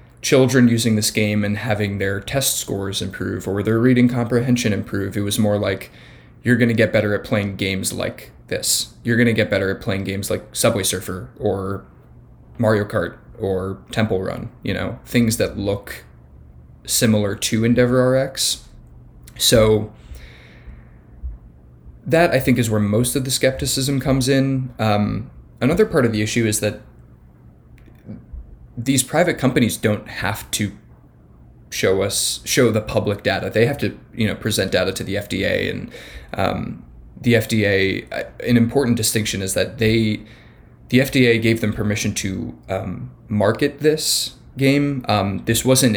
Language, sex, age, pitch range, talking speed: English, male, 20-39, 95-120 Hz, 155 wpm